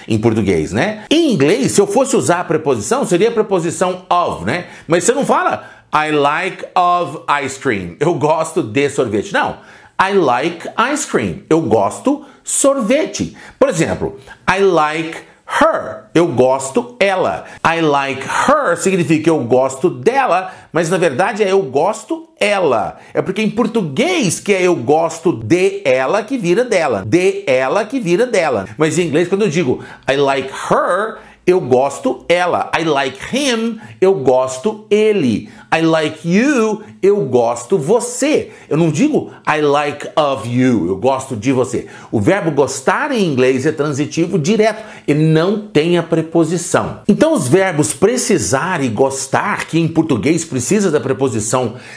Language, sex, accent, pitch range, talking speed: Portuguese, male, Brazilian, 145-215 Hz, 160 wpm